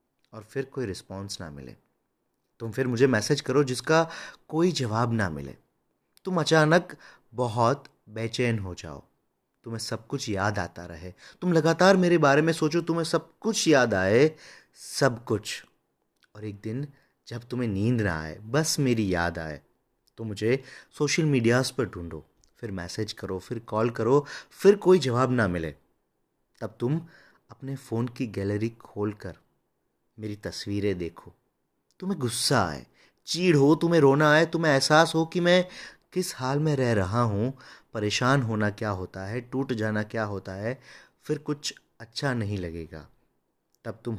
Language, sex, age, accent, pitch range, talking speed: Hindi, male, 30-49, native, 105-145 Hz, 160 wpm